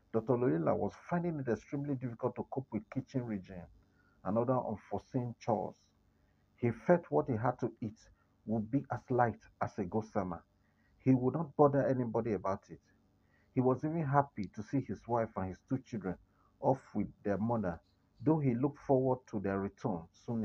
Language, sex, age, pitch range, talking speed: English, male, 50-69, 100-130 Hz, 180 wpm